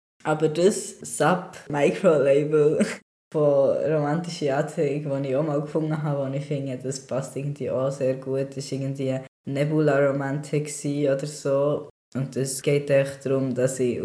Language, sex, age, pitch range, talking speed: German, female, 20-39, 125-145 Hz, 150 wpm